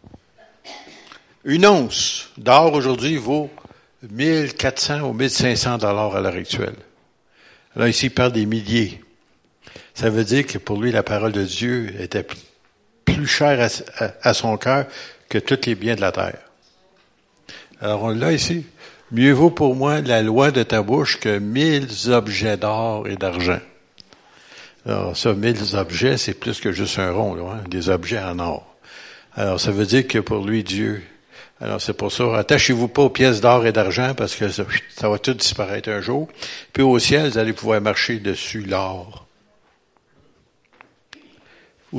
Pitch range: 100-125 Hz